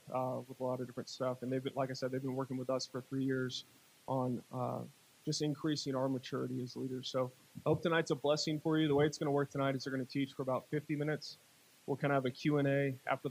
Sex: male